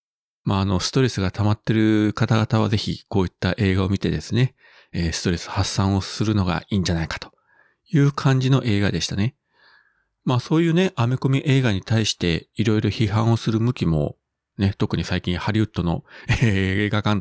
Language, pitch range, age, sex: Japanese, 90-115 Hz, 40-59, male